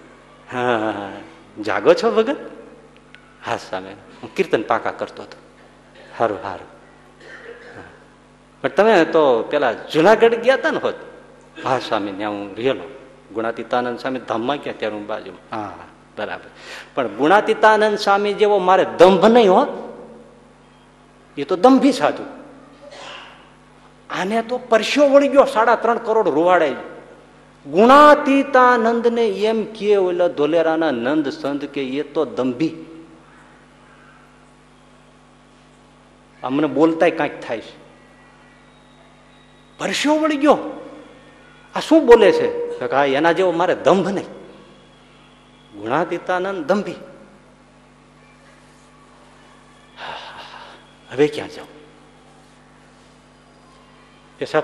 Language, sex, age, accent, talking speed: Gujarati, male, 50-69, native, 75 wpm